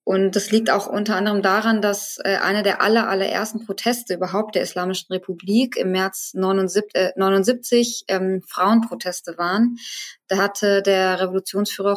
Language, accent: German, German